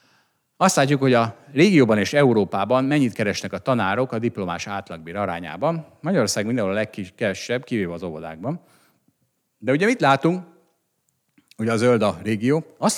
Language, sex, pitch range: Hungarian, male, 95-135 Hz